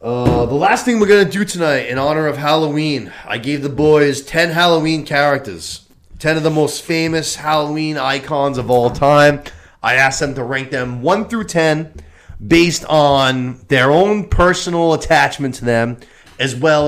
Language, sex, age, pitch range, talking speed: English, male, 30-49, 120-160 Hz, 175 wpm